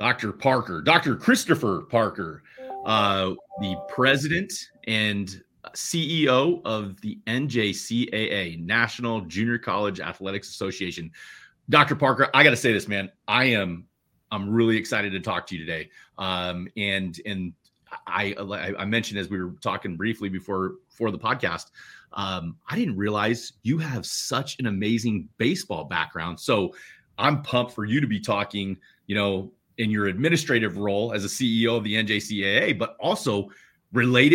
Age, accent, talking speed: 30-49, American, 145 wpm